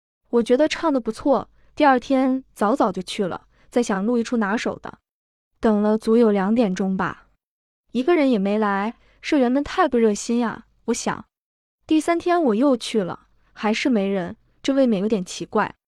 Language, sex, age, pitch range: Chinese, female, 20-39, 210-255 Hz